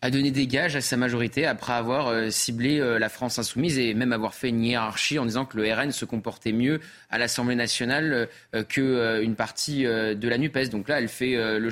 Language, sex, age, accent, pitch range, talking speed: French, male, 20-39, French, 105-125 Hz, 205 wpm